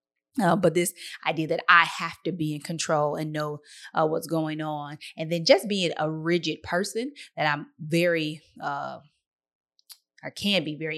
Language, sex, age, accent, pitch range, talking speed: English, female, 20-39, American, 150-175 Hz, 175 wpm